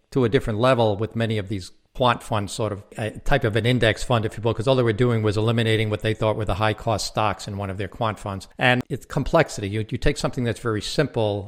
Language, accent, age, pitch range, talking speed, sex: English, American, 60-79, 100-120 Hz, 270 wpm, male